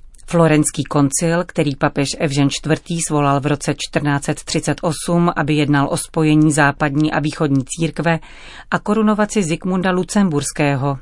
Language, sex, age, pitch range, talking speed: Czech, female, 40-59, 150-175 Hz, 120 wpm